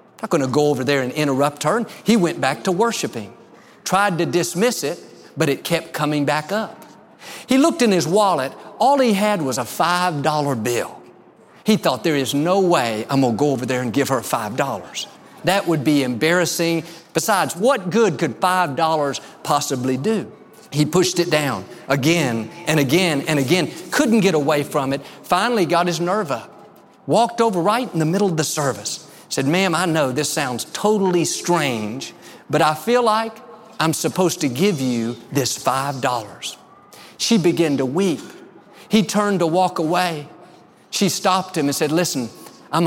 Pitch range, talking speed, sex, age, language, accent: 145-205 Hz, 180 wpm, male, 50-69, English, American